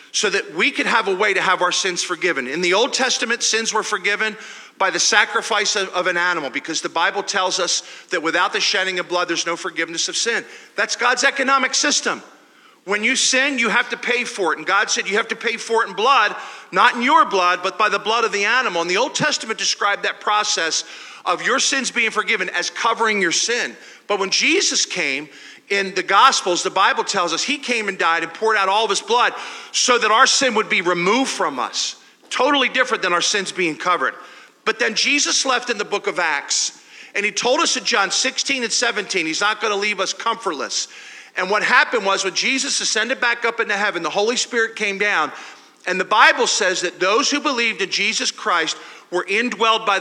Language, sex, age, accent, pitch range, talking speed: English, male, 40-59, American, 185-245 Hz, 220 wpm